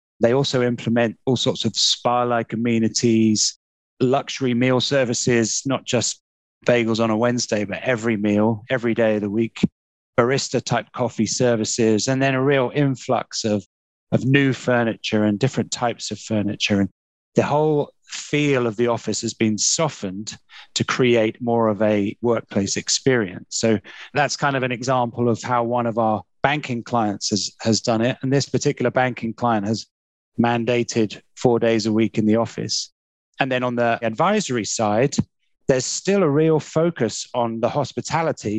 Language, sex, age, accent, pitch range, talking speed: English, male, 30-49, British, 110-130 Hz, 165 wpm